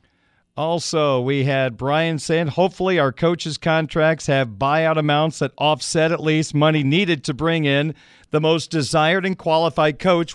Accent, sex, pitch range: American, male, 135-165 Hz